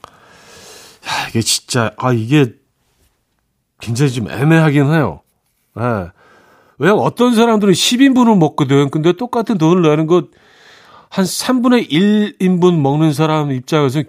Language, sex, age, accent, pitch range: Korean, male, 40-59, native, 135-185 Hz